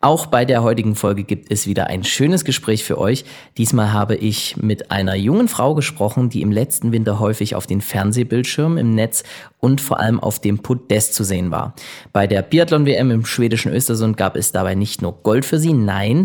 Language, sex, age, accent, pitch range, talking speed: German, male, 20-39, German, 105-130 Hz, 205 wpm